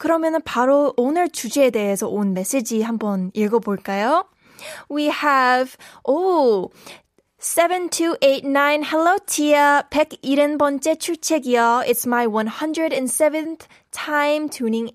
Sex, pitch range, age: female, 225-295 Hz, 10-29